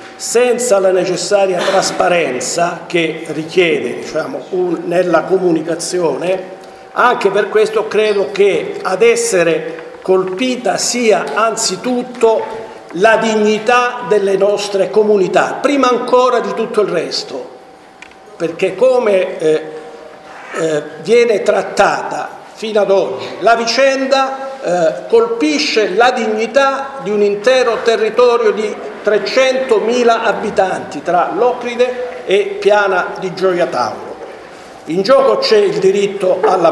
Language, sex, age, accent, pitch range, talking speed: Italian, male, 50-69, native, 190-250 Hz, 105 wpm